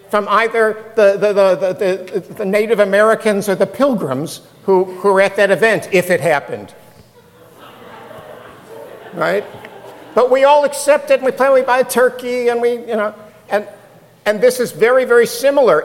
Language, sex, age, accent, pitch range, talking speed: English, male, 60-79, American, 155-225 Hz, 170 wpm